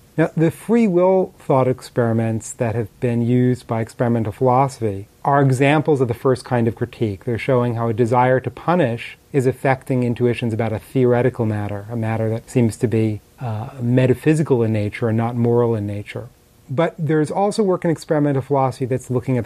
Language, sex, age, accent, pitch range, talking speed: English, male, 30-49, American, 120-145 Hz, 185 wpm